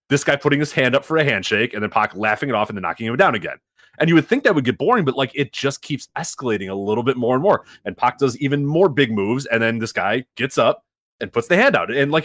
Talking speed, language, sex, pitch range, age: 300 wpm, English, male, 125-180 Hz, 30-49